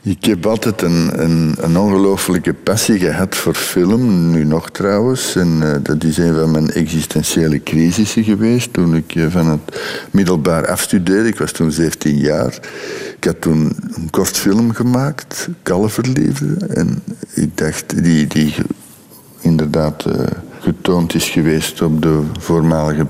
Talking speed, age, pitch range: 150 wpm, 60-79, 75-100 Hz